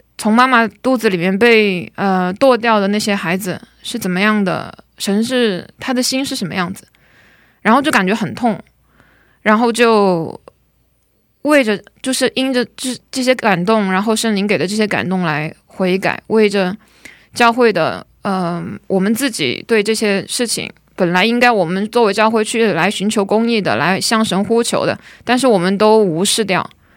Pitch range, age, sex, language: 195-230 Hz, 20-39, female, Korean